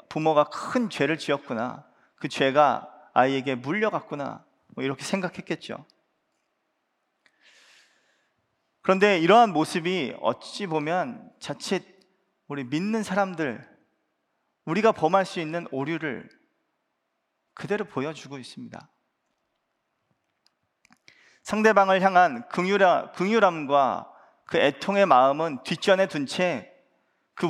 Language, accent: Korean, native